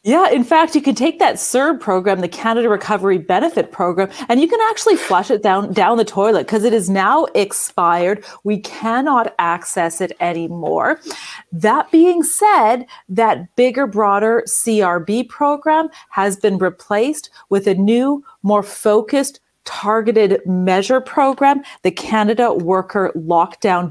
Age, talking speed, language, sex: 40-59, 145 wpm, English, female